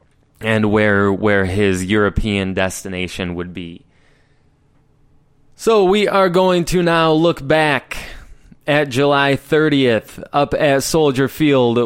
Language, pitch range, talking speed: English, 110-140 Hz, 115 wpm